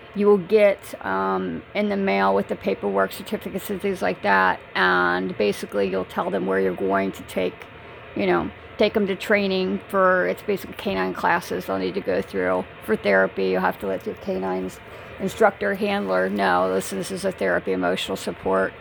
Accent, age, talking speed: American, 40-59, 185 wpm